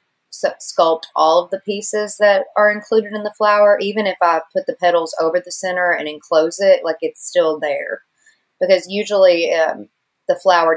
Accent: American